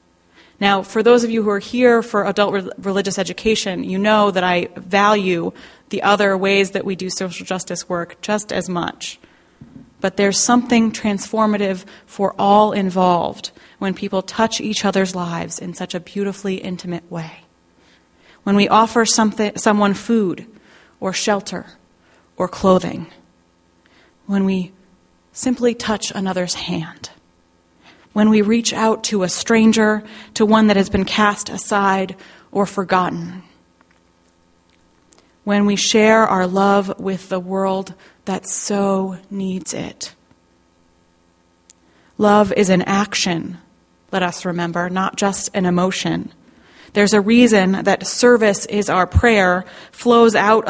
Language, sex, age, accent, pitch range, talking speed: English, female, 30-49, American, 180-210 Hz, 135 wpm